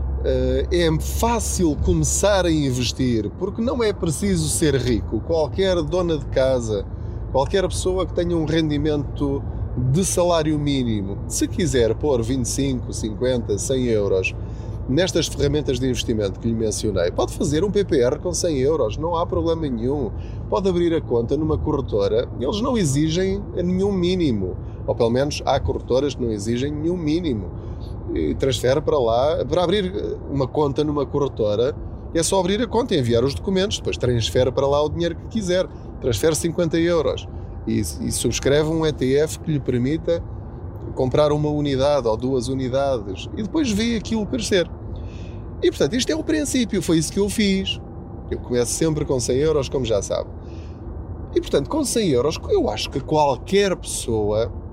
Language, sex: Portuguese, male